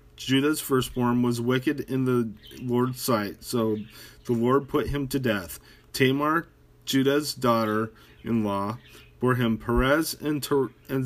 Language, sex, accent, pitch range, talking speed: English, male, American, 110-140 Hz, 125 wpm